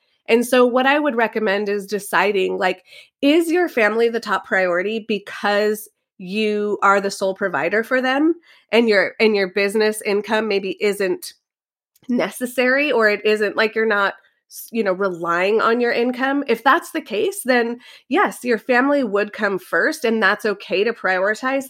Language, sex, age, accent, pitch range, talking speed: English, female, 30-49, American, 200-250 Hz, 165 wpm